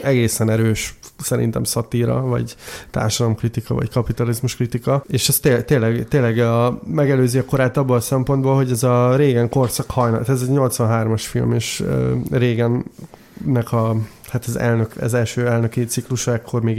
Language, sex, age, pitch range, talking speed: Hungarian, male, 20-39, 115-125 Hz, 155 wpm